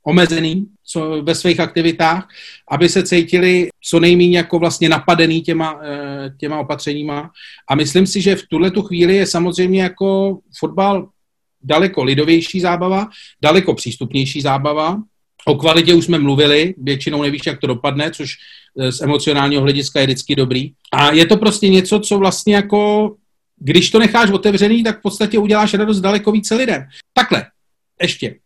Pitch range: 150-190 Hz